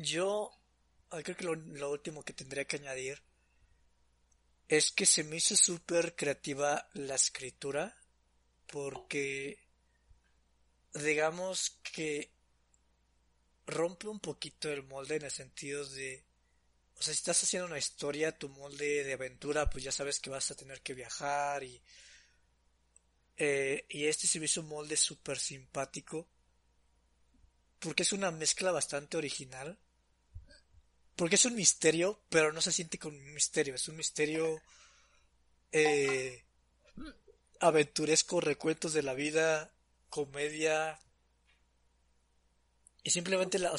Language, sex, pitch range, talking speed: Spanish, male, 100-165 Hz, 125 wpm